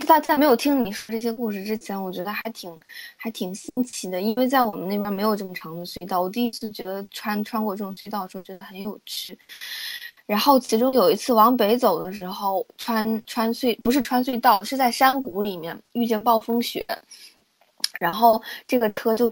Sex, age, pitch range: female, 20-39, 200-245 Hz